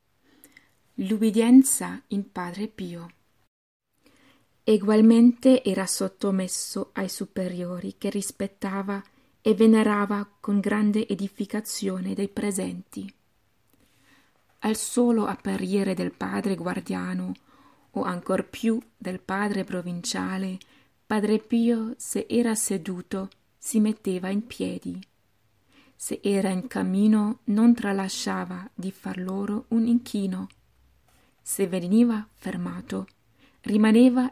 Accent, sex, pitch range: native, female, 180-215 Hz